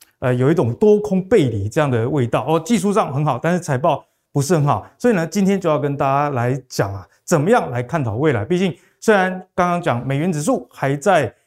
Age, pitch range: 20-39, 130-185 Hz